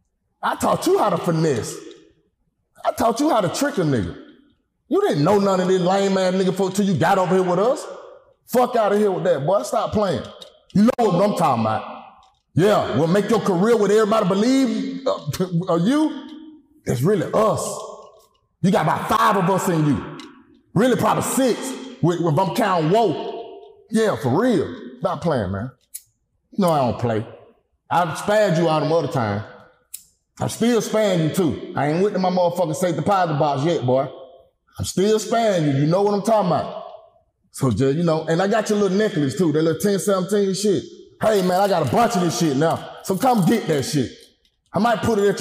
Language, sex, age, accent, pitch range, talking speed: English, male, 30-49, American, 155-215 Hz, 205 wpm